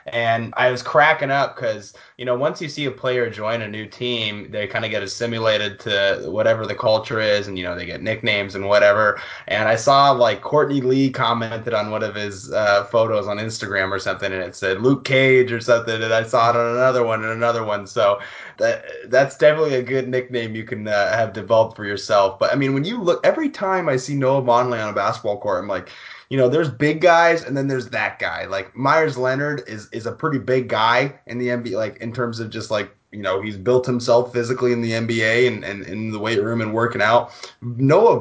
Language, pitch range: English, 105-125 Hz